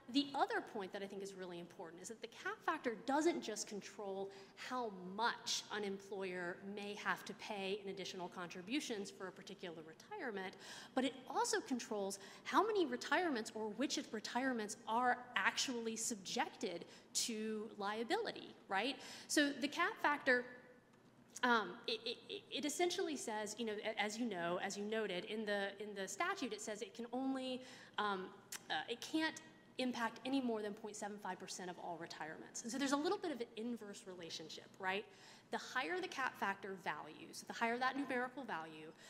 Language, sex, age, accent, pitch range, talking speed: English, female, 30-49, American, 195-260 Hz, 170 wpm